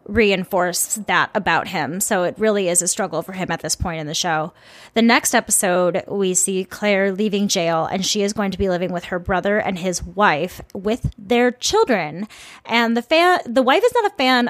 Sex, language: female, English